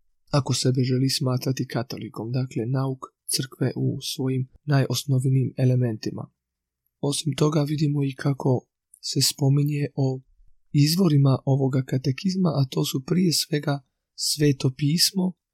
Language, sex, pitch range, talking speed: Croatian, male, 130-145 Hz, 110 wpm